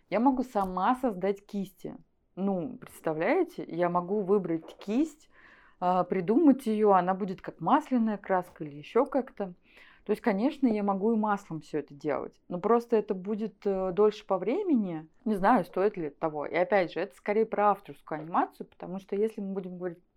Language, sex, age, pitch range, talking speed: Russian, female, 20-39, 175-225 Hz, 175 wpm